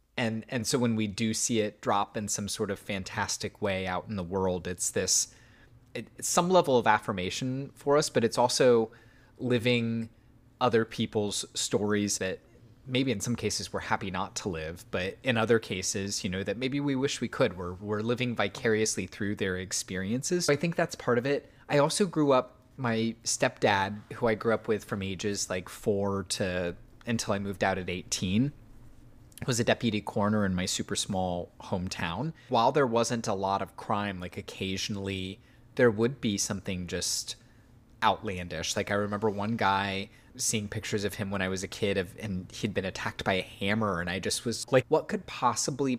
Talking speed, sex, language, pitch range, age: 190 wpm, male, English, 100-120 Hz, 20-39